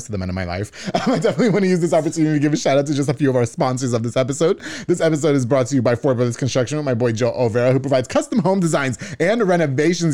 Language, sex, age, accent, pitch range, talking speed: English, male, 30-49, American, 130-175 Hz, 300 wpm